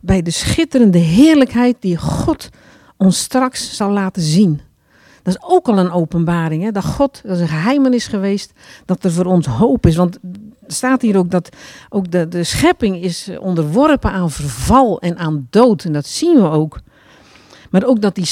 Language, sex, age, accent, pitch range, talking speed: Dutch, female, 50-69, Dutch, 160-225 Hz, 185 wpm